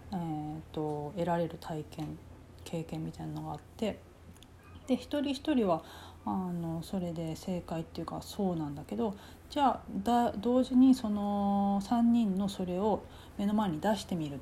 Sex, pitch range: female, 150-235 Hz